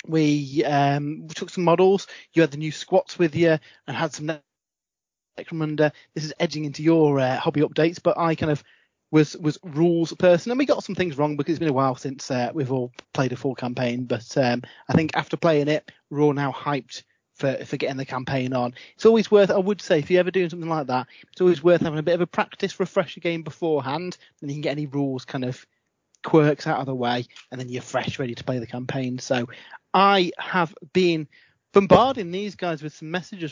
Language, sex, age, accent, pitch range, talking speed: English, male, 30-49, British, 130-175 Hz, 225 wpm